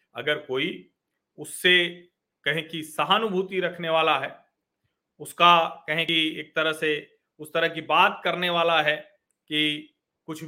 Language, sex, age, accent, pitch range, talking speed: Hindi, male, 40-59, native, 155-235 Hz, 135 wpm